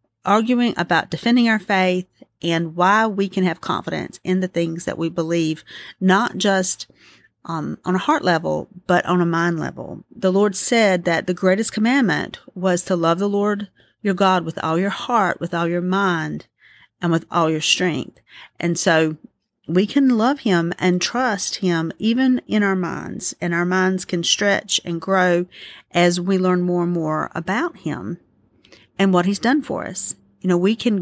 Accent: American